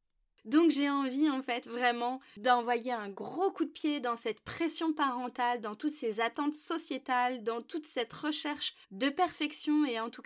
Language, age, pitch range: French, 20-39, 240-300 Hz